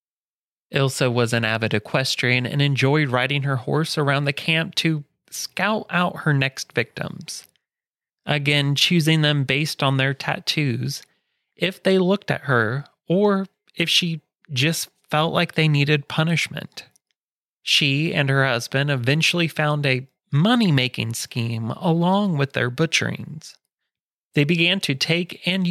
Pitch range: 135-170 Hz